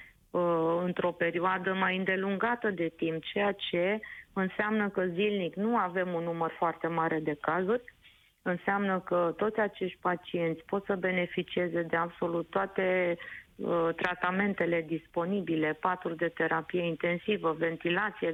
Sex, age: female, 30-49